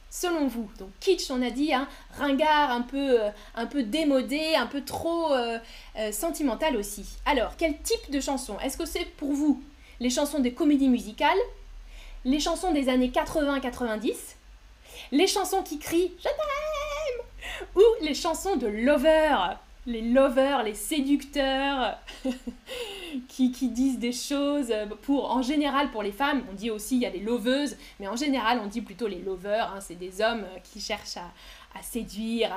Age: 10-29